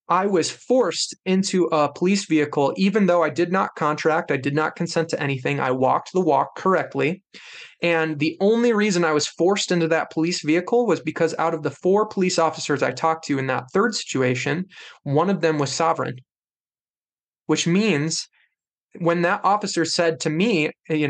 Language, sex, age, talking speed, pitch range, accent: English, male, 20-39, 180 wpm, 150-190 Hz, American